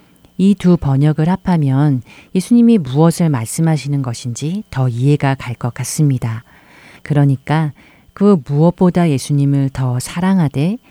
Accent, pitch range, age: native, 130-170 Hz, 40-59